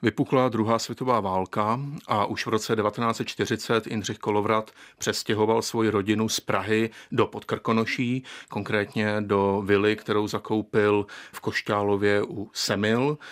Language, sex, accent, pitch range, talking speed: Czech, male, native, 105-110 Hz, 120 wpm